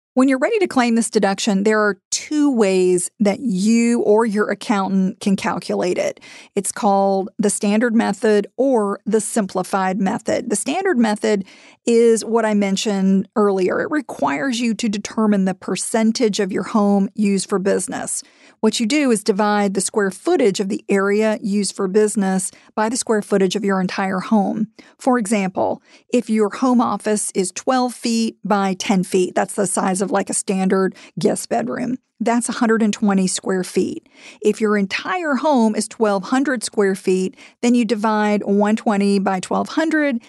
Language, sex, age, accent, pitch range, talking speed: English, female, 40-59, American, 200-245 Hz, 165 wpm